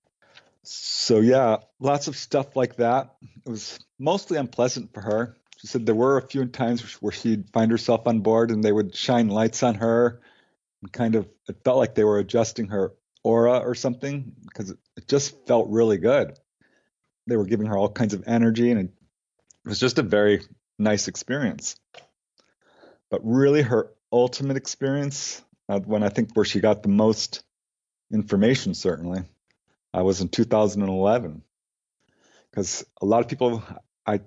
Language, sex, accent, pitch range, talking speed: English, male, American, 105-125 Hz, 165 wpm